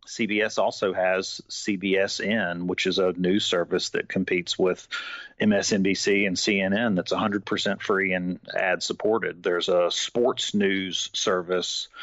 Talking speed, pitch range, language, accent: 135 wpm, 90-105 Hz, English, American